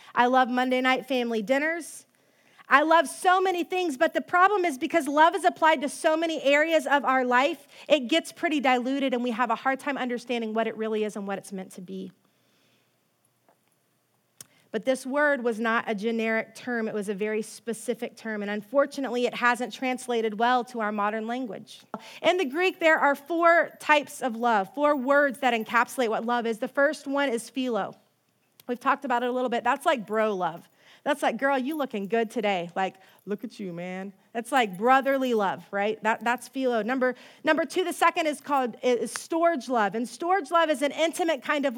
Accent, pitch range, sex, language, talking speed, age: American, 230-295 Hz, female, English, 205 wpm, 30-49